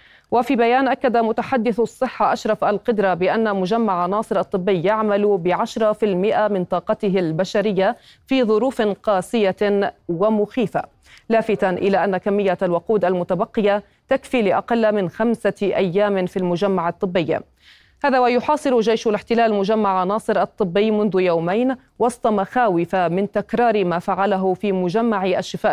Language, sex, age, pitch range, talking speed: Arabic, female, 30-49, 185-225 Hz, 125 wpm